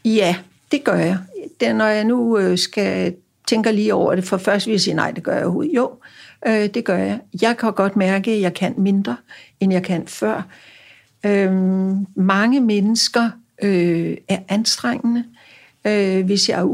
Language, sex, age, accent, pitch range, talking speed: Danish, female, 60-79, native, 180-220 Hz, 160 wpm